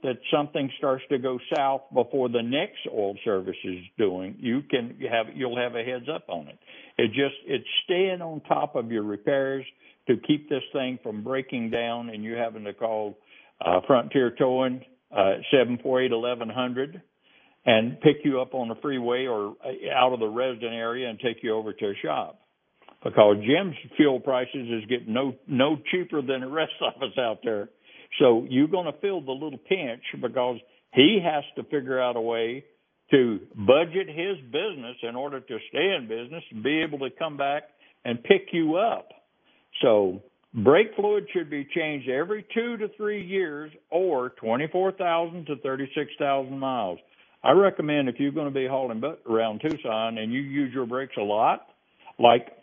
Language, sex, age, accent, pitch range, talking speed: English, male, 60-79, American, 120-155 Hz, 180 wpm